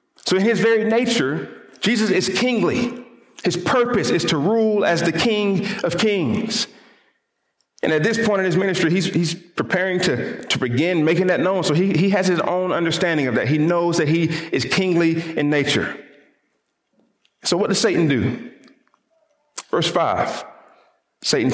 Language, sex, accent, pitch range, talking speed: English, male, American, 150-200 Hz, 165 wpm